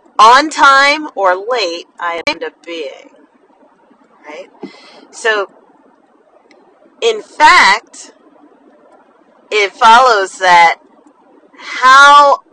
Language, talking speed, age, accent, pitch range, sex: English, 75 wpm, 40-59, American, 190-290 Hz, female